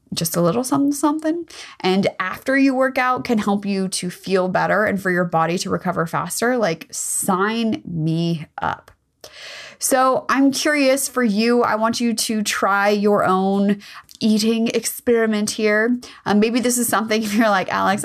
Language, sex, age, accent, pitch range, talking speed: English, female, 20-39, American, 180-235 Hz, 170 wpm